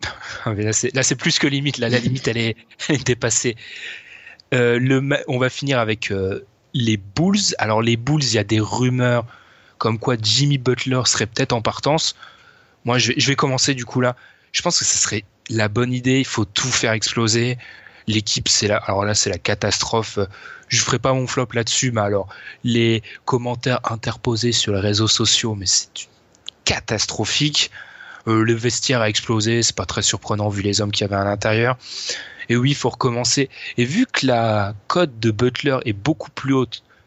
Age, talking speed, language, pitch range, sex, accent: 20-39, 195 wpm, French, 110-130 Hz, male, French